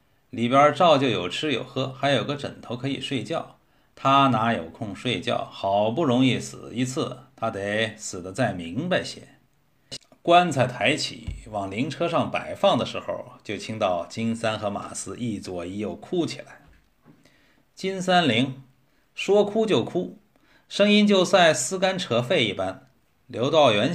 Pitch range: 120-185 Hz